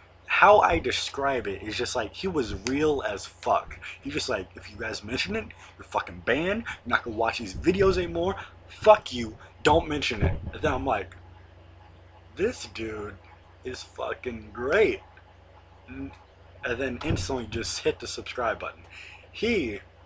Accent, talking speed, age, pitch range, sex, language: American, 160 wpm, 30-49, 95-150 Hz, male, English